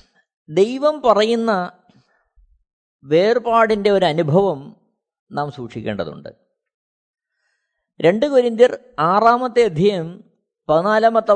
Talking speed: 65 wpm